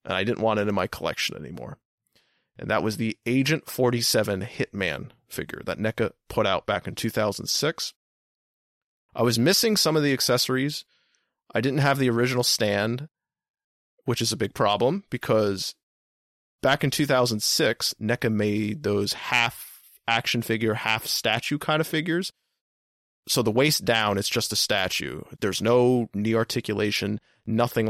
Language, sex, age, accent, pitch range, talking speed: English, male, 30-49, American, 105-150 Hz, 145 wpm